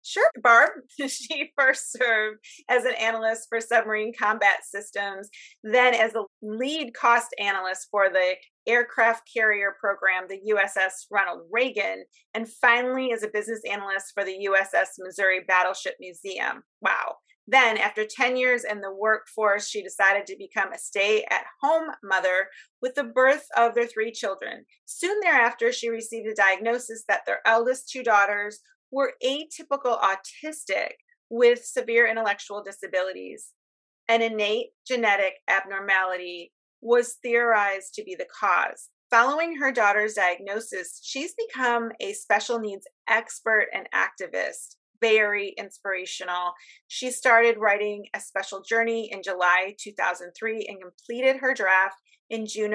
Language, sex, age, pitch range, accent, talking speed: English, female, 30-49, 195-245 Hz, American, 135 wpm